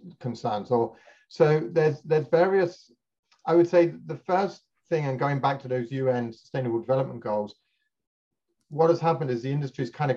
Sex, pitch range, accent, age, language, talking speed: male, 115-135 Hz, British, 40-59, English, 170 wpm